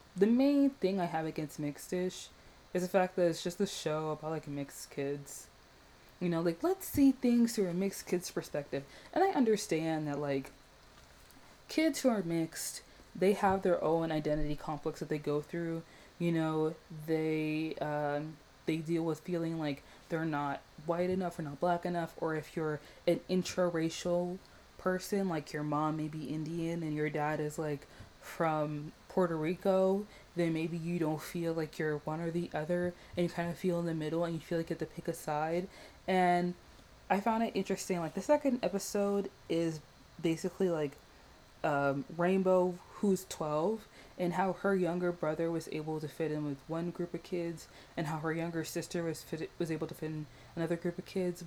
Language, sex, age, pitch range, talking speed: English, female, 20-39, 155-180 Hz, 190 wpm